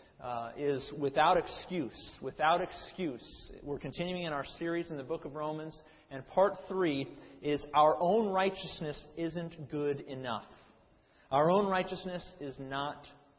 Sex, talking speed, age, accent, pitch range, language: male, 140 wpm, 40-59, American, 140-180 Hz, English